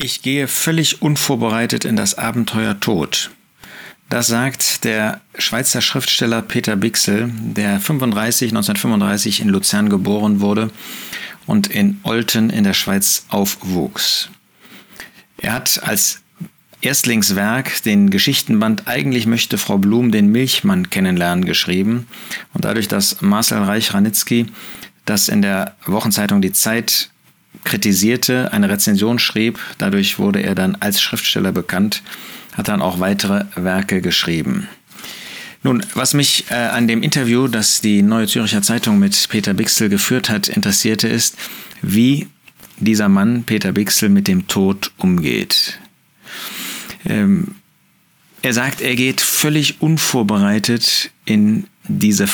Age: 40-59